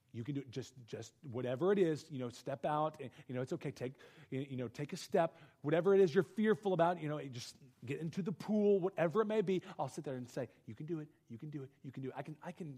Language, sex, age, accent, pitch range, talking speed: English, male, 30-49, American, 120-155 Hz, 290 wpm